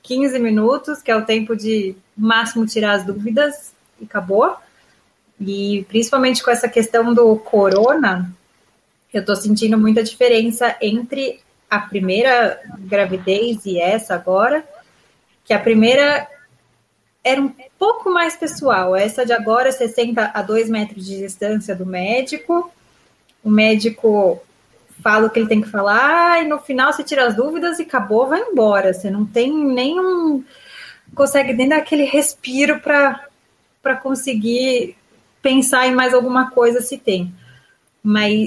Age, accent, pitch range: 20-39, Brazilian, 215-265 Hz